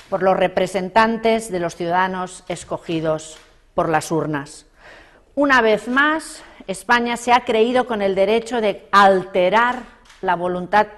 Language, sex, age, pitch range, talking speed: Spanish, female, 40-59, 175-220 Hz, 130 wpm